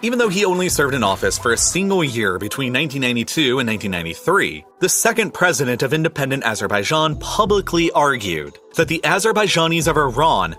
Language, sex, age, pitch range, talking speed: English, male, 30-49, 125-180 Hz, 160 wpm